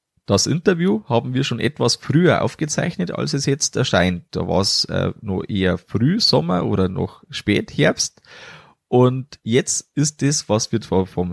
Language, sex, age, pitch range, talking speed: German, male, 20-39, 105-140 Hz, 155 wpm